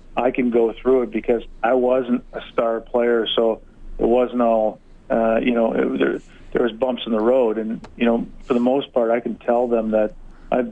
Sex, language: male, English